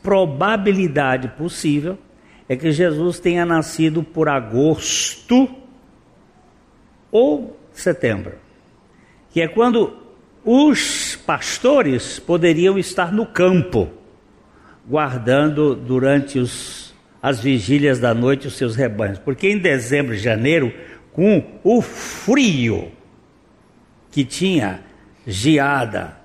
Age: 60-79